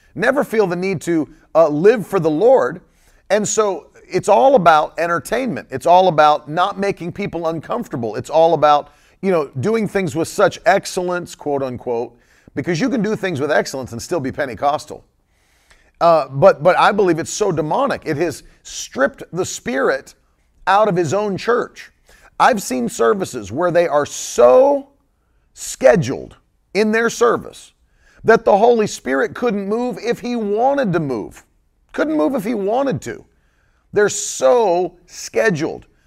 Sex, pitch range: male, 160-210 Hz